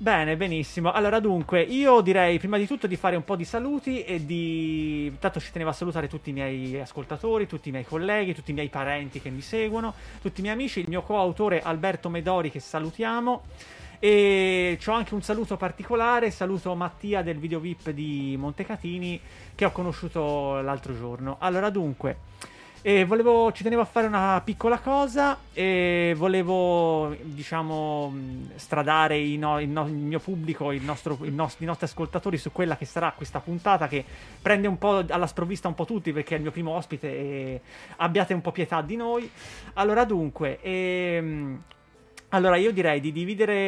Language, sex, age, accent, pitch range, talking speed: Italian, male, 30-49, native, 155-200 Hz, 180 wpm